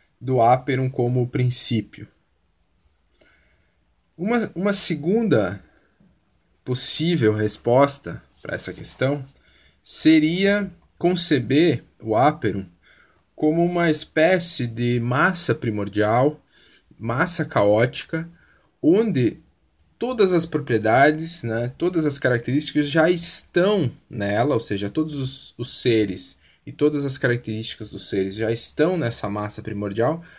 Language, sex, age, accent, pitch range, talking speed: Portuguese, male, 10-29, Brazilian, 105-155 Hz, 105 wpm